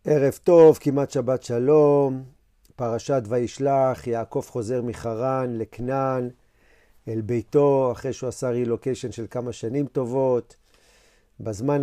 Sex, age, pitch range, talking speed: male, 40-59, 120-145 Hz, 110 wpm